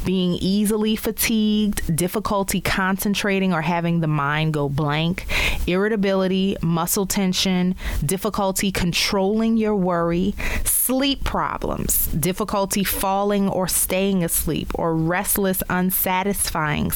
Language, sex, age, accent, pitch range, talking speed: English, female, 20-39, American, 160-195 Hz, 100 wpm